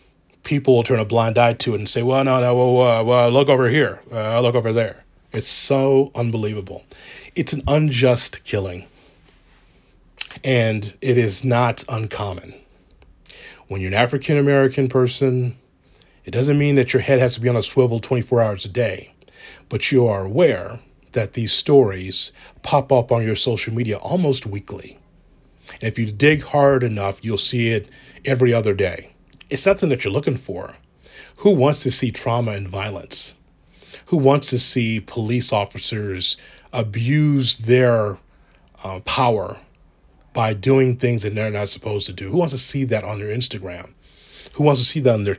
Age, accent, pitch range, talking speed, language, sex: 30-49, American, 110-135 Hz, 170 wpm, English, male